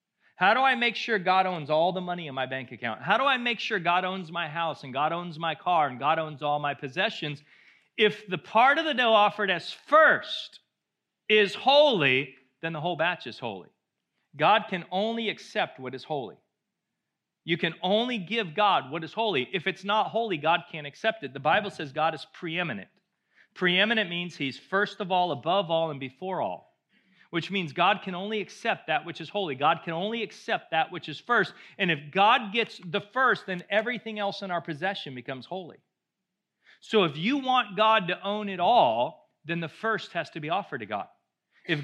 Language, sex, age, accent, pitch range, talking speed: English, male, 40-59, American, 165-215 Hz, 205 wpm